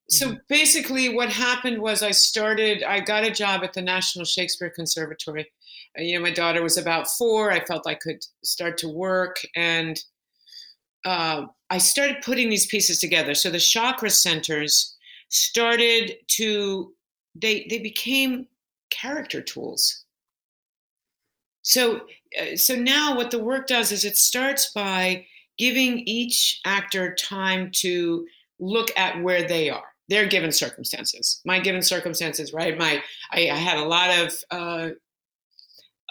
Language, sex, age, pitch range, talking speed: English, female, 50-69, 175-230 Hz, 145 wpm